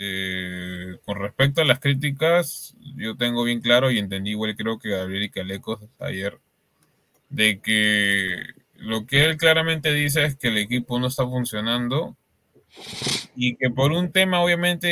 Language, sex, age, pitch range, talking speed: Spanish, male, 20-39, 105-135 Hz, 155 wpm